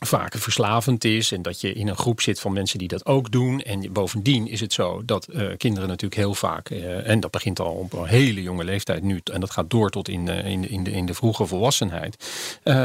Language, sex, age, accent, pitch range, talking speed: Dutch, male, 40-59, Dutch, 95-120 Hz, 250 wpm